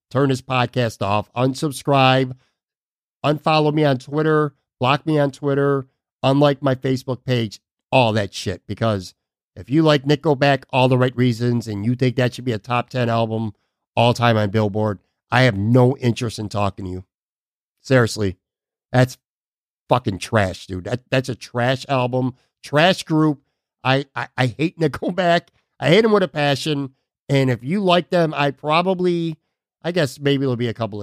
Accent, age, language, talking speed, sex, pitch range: American, 50-69, English, 170 wpm, male, 120-155 Hz